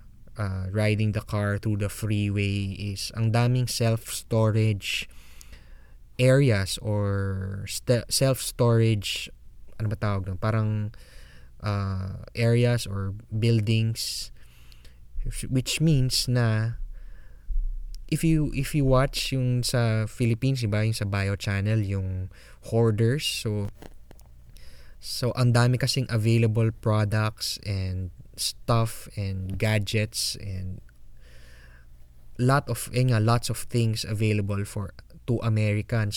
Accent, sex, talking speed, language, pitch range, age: Filipino, male, 105 wpm, English, 95-115 Hz, 20-39